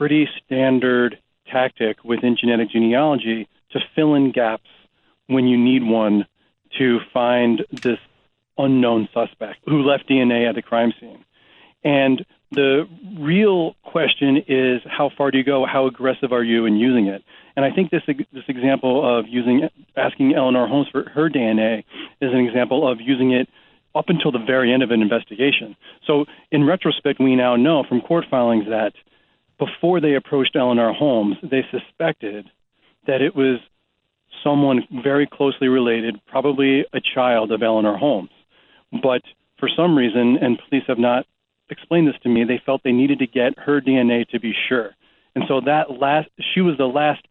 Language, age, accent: English, 40-59, American